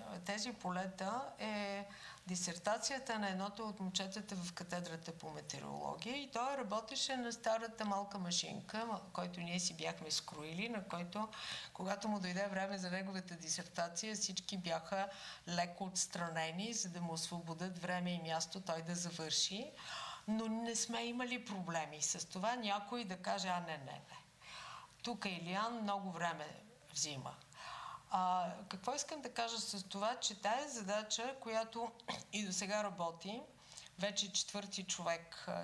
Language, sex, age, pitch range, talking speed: Bulgarian, female, 50-69, 175-220 Hz, 145 wpm